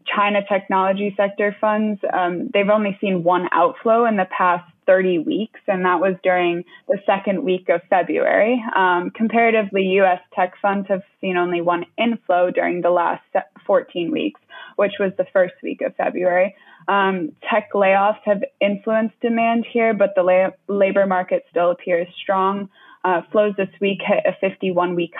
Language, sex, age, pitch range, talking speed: English, female, 20-39, 180-205 Hz, 160 wpm